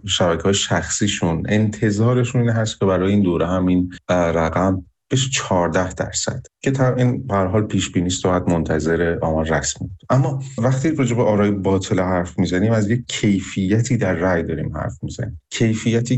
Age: 30-49